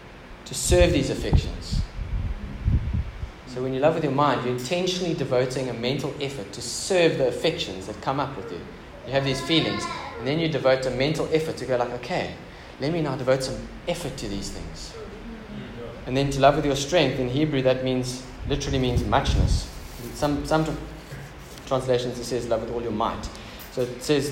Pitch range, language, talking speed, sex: 110-135 Hz, English, 190 wpm, male